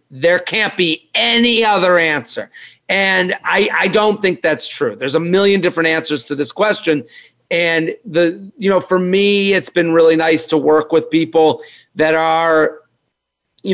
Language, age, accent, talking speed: English, 40-59, American, 165 wpm